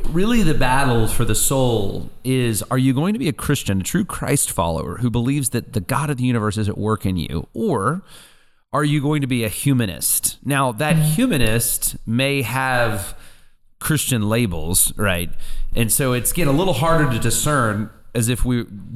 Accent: American